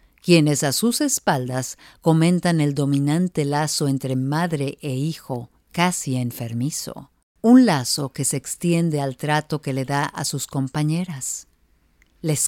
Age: 50-69